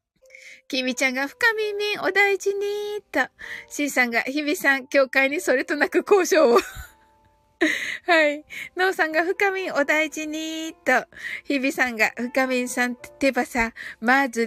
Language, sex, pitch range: Japanese, female, 255-380 Hz